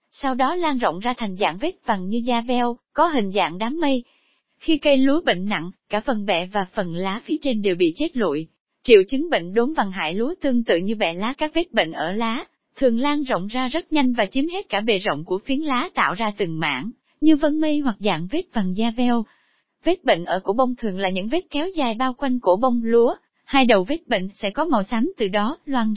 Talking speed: 245 wpm